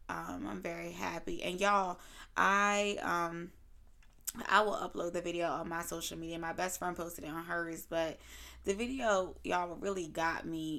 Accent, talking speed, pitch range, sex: American, 170 wpm, 160-180 Hz, female